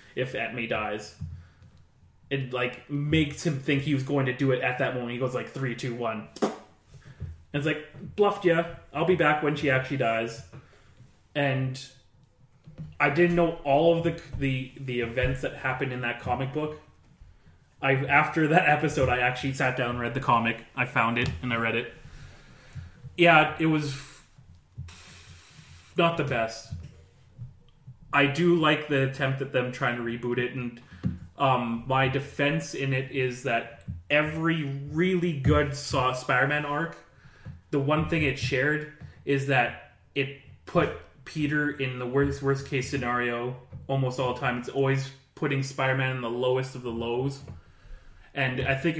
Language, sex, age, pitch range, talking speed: English, male, 20-39, 125-145 Hz, 165 wpm